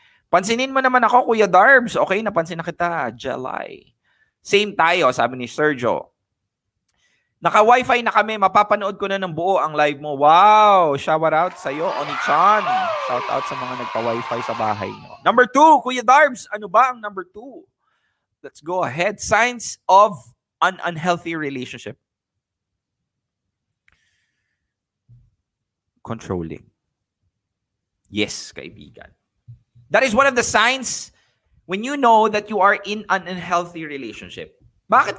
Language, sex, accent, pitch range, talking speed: English, male, Filipino, 145-220 Hz, 135 wpm